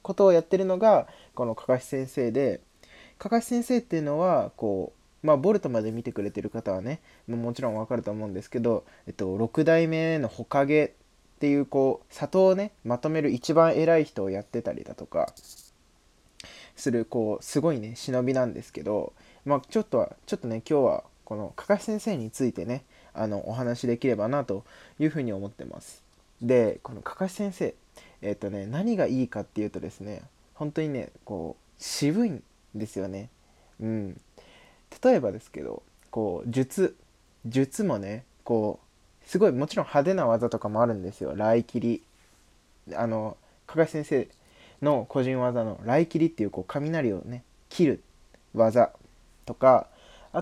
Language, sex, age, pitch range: Japanese, male, 20-39, 105-150 Hz